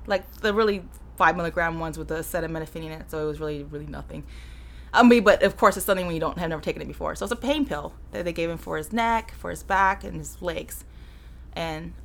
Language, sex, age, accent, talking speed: English, female, 20-39, American, 255 wpm